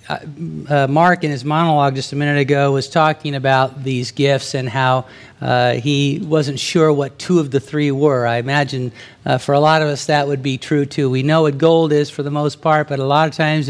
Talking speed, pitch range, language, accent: 230 wpm, 130-155 Hz, English, American